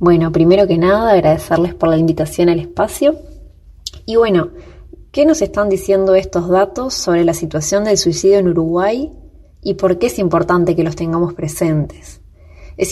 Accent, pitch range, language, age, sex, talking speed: Argentinian, 165-205 Hz, Spanish, 20-39, female, 165 wpm